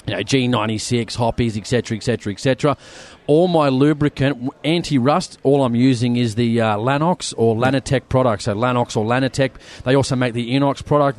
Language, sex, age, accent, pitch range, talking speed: English, male, 30-49, Australian, 115-135 Hz, 170 wpm